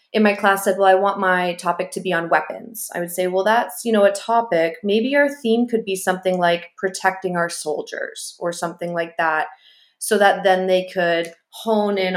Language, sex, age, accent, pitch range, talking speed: English, female, 20-39, American, 170-200 Hz, 210 wpm